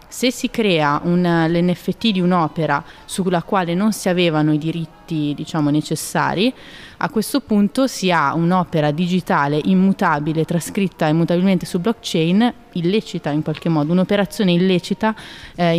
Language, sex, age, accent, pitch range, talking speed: Italian, female, 20-39, native, 165-195 Hz, 130 wpm